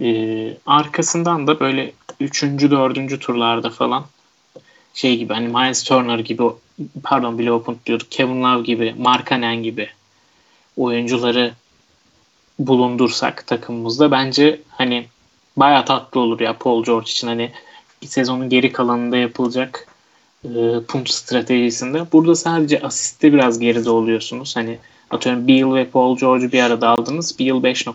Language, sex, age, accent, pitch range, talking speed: Turkish, male, 30-49, native, 120-145 Hz, 130 wpm